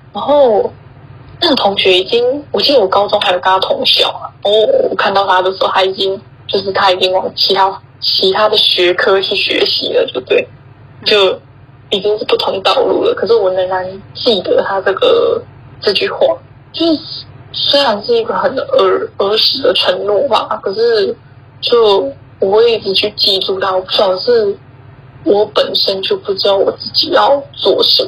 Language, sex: Chinese, female